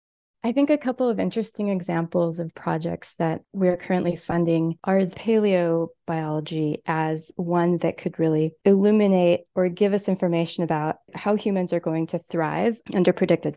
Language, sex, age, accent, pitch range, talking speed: English, female, 20-39, American, 165-200 Hz, 155 wpm